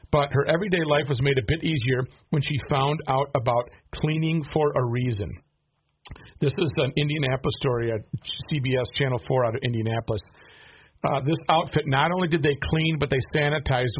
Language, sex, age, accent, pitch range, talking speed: English, male, 50-69, American, 120-145 Hz, 175 wpm